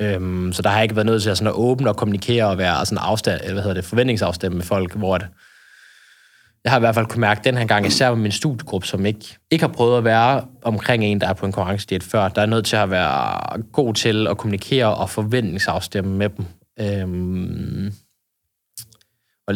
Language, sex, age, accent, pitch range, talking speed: Danish, male, 20-39, native, 95-115 Hz, 200 wpm